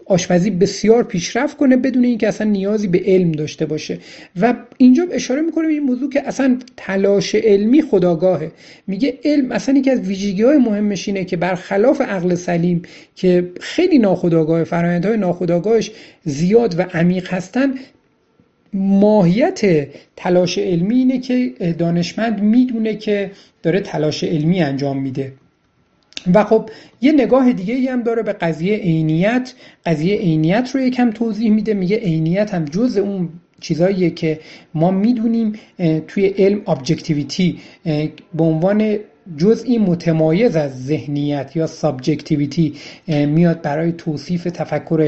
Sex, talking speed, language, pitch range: male, 135 wpm, Persian, 165-230 Hz